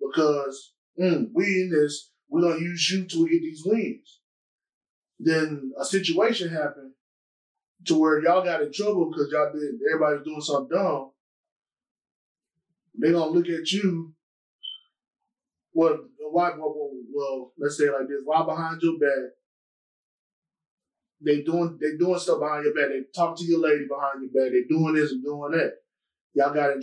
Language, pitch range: English, 150-200 Hz